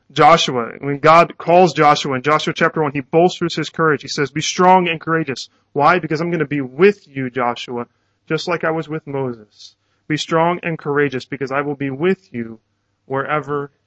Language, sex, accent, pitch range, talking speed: English, male, American, 120-170 Hz, 195 wpm